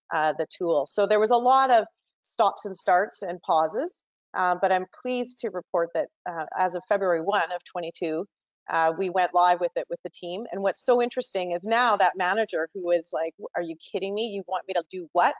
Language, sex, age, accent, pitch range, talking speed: English, female, 30-49, American, 175-225 Hz, 225 wpm